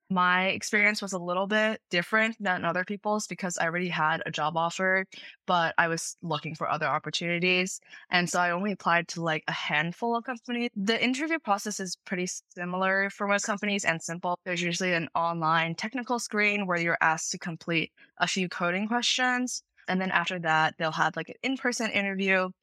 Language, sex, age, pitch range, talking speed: English, female, 20-39, 165-200 Hz, 190 wpm